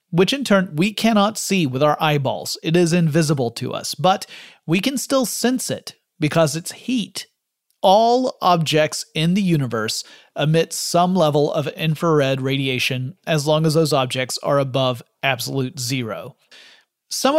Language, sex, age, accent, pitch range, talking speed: English, male, 40-59, American, 140-185 Hz, 150 wpm